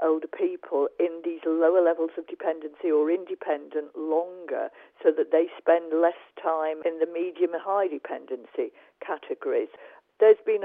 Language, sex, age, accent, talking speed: English, female, 50-69, British, 145 wpm